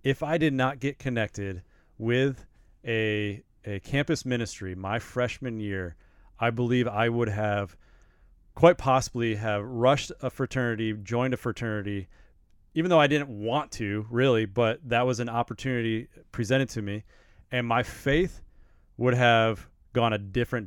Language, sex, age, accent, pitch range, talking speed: English, male, 30-49, American, 105-130 Hz, 150 wpm